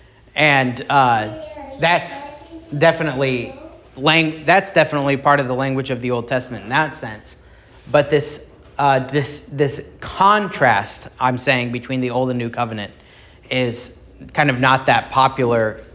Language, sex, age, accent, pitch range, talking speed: English, male, 30-49, American, 120-150 Hz, 145 wpm